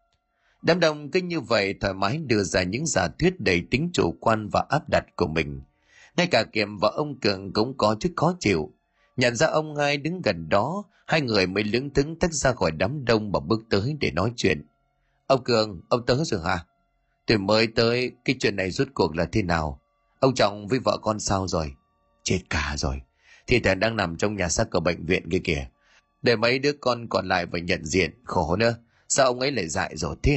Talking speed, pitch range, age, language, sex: 225 wpm, 90-130 Hz, 30-49, Vietnamese, male